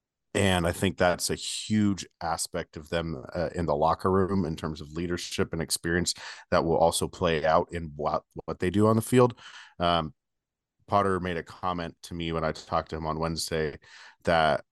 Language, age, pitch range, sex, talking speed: English, 40-59, 80-95 Hz, male, 195 wpm